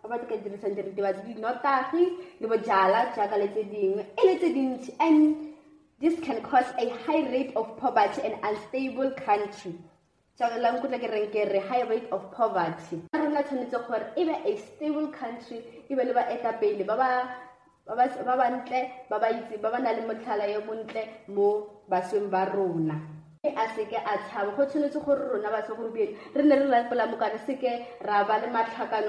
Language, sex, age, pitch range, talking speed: English, female, 20-39, 205-260 Hz, 70 wpm